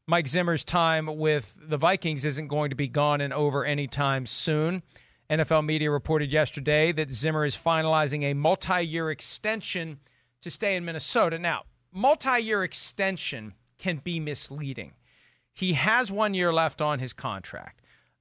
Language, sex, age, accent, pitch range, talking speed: English, male, 40-59, American, 150-195 Hz, 145 wpm